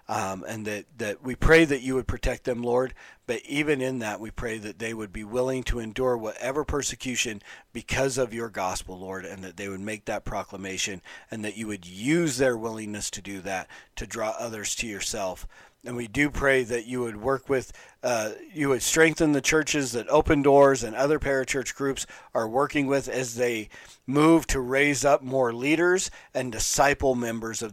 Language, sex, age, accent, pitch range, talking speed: English, male, 40-59, American, 105-140 Hz, 195 wpm